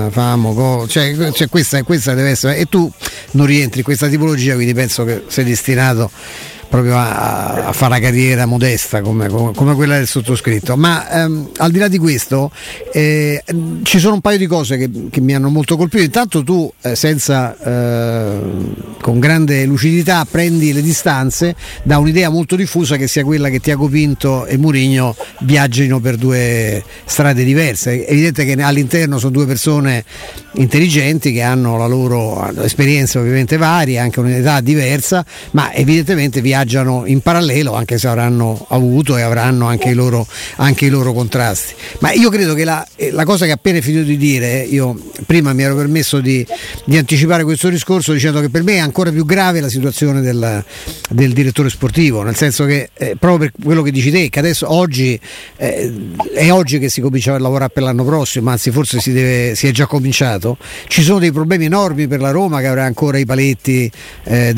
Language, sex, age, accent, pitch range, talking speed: Italian, male, 50-69, native, 125-155 Hz, 185 wpm